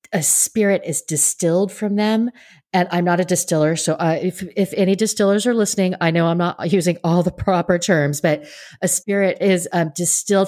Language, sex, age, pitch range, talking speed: English, female, 30-49, 140-175 Hz, 195 wpm